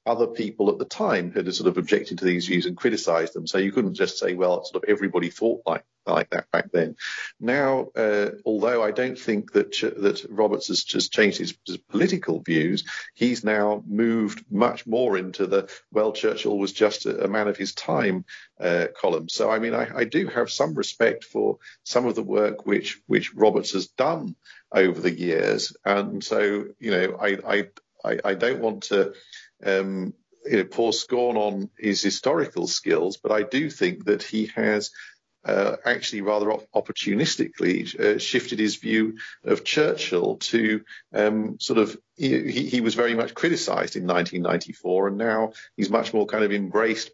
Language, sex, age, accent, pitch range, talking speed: English, male, 50-69, British, 100-115 Hz, 180 wpm